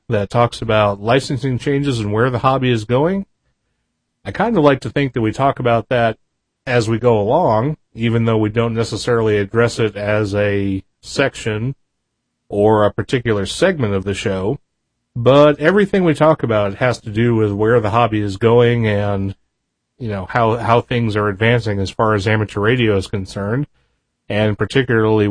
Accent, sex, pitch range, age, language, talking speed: American, male, 105-125 Hz, 30-49, English, 175 wpm